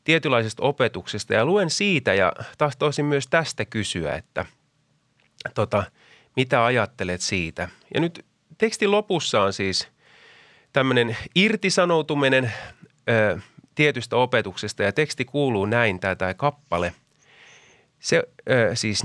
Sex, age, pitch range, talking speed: male, 30-49, 105-155 Hz, 100 wpm